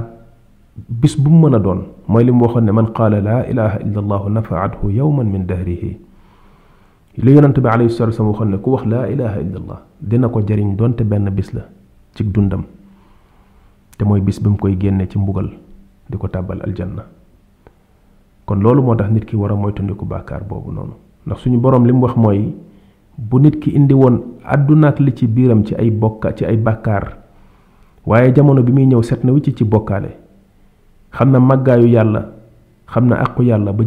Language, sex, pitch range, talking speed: French, male, 100-125 Hz, 65 wpm